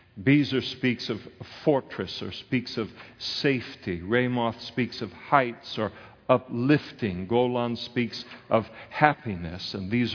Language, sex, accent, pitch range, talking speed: English, male, American, 105-125 Hz, 120 wpm